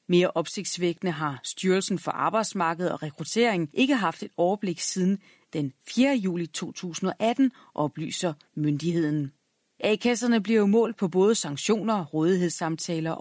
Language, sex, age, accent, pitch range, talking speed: Danish, female, 30-49, native, 165-225 Hz, 125 wpm